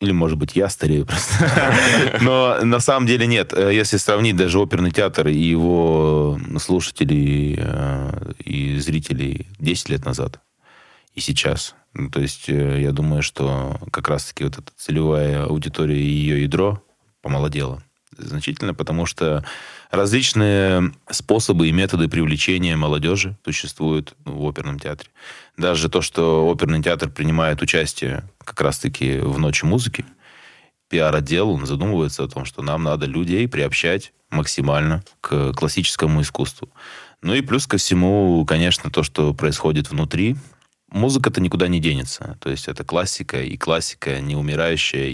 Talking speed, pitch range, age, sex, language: 135 wpm, 75-95 Hz, 20-39, male, Russian